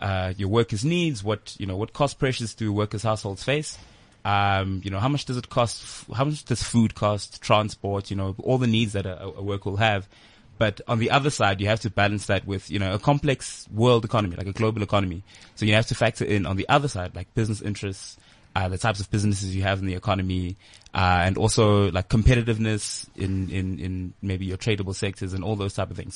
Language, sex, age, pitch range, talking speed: English, male, 20-39, 95-110 Hz, 230 wpm